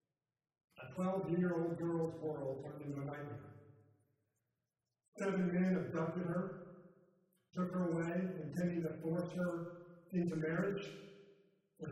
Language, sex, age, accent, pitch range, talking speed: English, male, 50-69, American, 145-180 Hz, 105 wpm